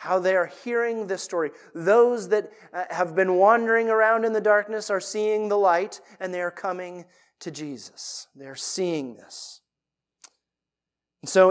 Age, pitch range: 30-49, 175-215 Hz